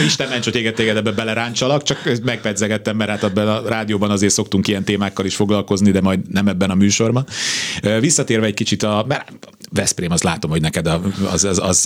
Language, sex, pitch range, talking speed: Hungarian, male, 90-105 Hz, 200 wpm